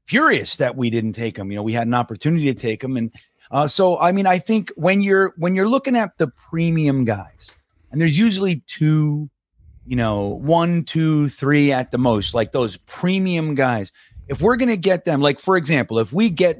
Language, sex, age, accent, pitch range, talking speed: English, male, 30-49, American, 120-165 Hz, 210 wpm